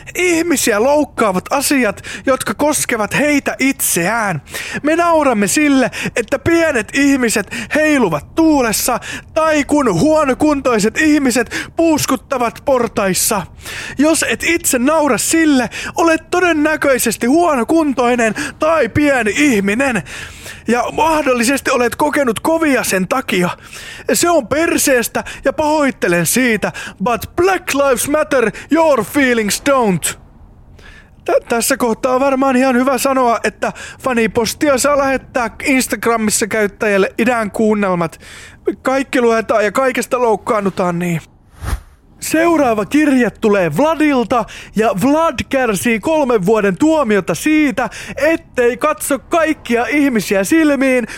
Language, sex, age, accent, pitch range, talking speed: English, male, 20-39, Finnish, 225-300 Hz, 105 wpm